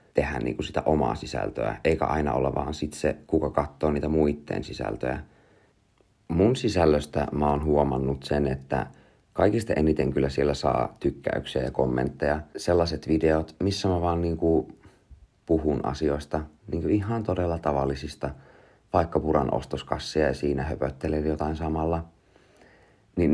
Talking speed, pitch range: 140 wpm, 70-80 Hz